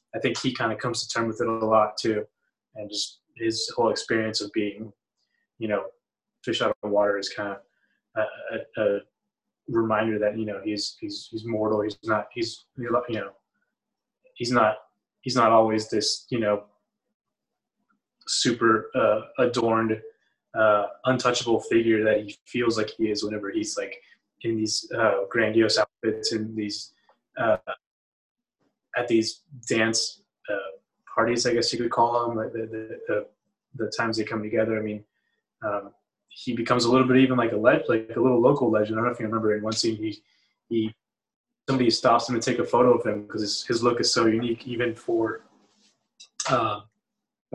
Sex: male